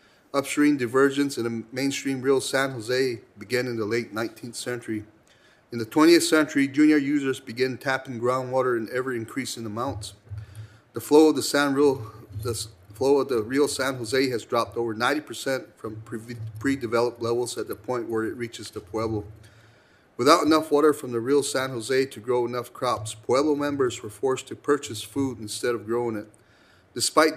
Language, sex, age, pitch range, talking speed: English, male, 40-59, 115-135 Hz, 175 wpm